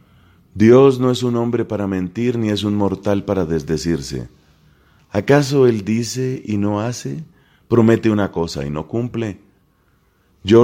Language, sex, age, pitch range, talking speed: Spanish, male, 40-59, 80-105 Hz, 145 wpm